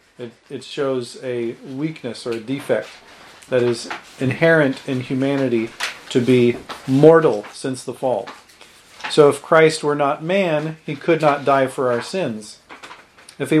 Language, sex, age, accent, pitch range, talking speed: English, male, 40-59, American, 130-160 Hz, 150 wpm